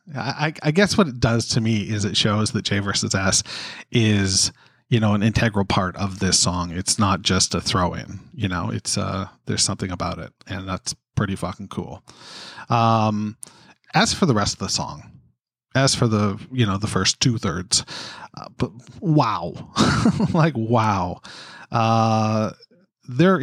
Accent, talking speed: American, 170 wpm